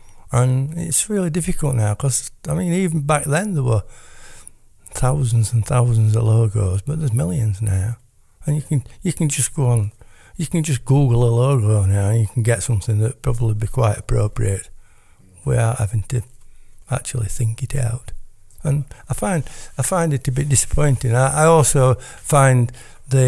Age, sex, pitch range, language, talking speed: 60-79, male, 110-140 Hz, English, 175 wpm